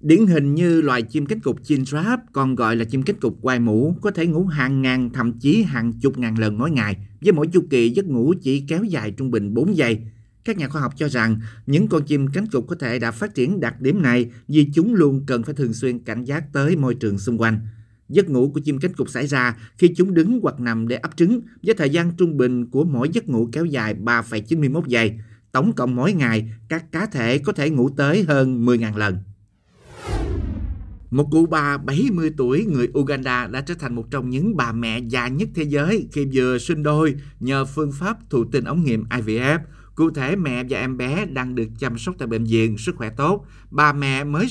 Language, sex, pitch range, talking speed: Vietnamese, male, 115-155 Hz, 225 wpm